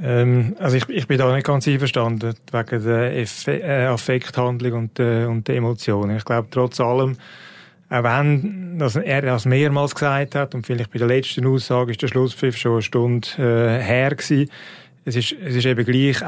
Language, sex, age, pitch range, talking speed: German, male, 30-49, 115-135 Hz, 175 wpm